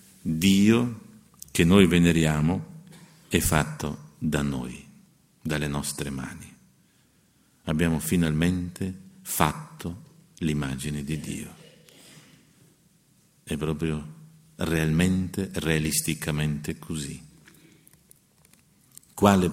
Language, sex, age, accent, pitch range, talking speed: Italian, male, 50-69, native, 75-90 Hz, 70 wpm